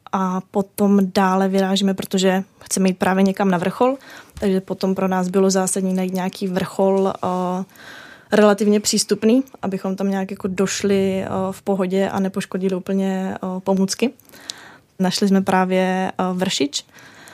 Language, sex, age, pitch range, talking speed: Czech, female, 20-39, 185-195 Hz, 140 wpm